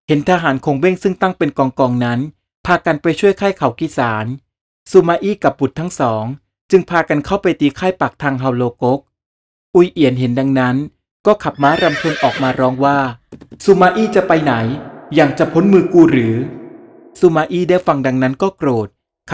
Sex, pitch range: male, 130-175 Hz